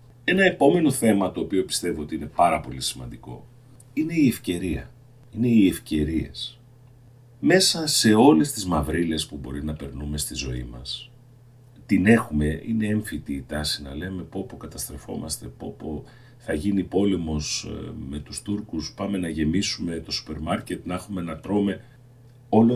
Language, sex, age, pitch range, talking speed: Greek, male, 40-59, 75-120 Hz, 150 wpm